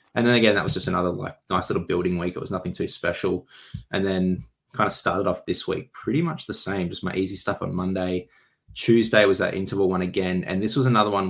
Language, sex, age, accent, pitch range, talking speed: English, male, 20-39, Australian, 90-110 Hz, 245 wpm